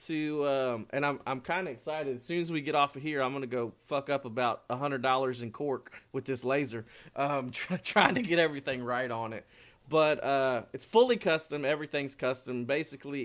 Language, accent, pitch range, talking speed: English, American, 125-160 Hz, 205 wpm